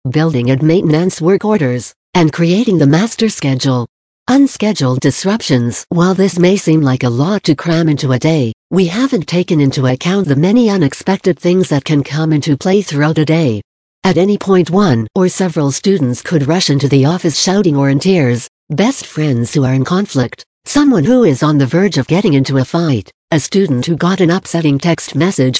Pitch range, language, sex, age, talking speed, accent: 135-185 Hz, English, female, 60-79, 190 wpm, American